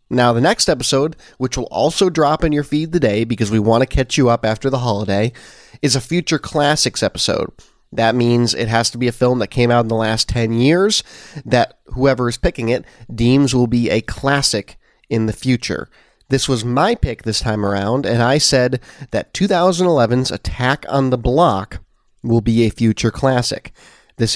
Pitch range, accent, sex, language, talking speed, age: 110-140 Hz, American, male, English, 190 wpm, 30-49